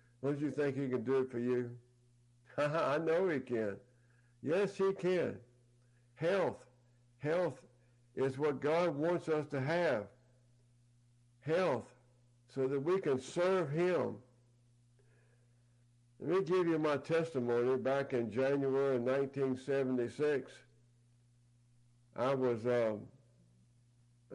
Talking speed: 105 wpm